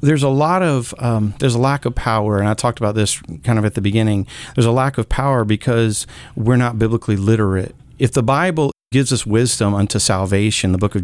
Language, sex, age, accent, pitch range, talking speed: English, male, 40-59, American, 105-130 Hz, 225 wpm